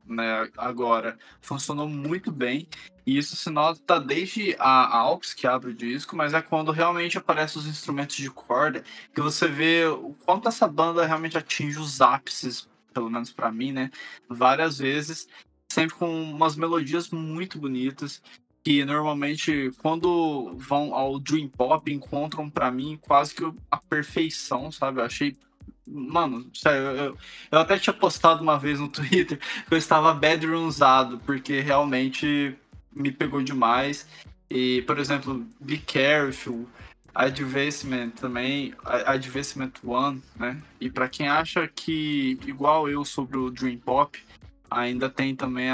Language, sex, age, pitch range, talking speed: Portuguese, male, 20-39, 130-160 Hz, 145 wpm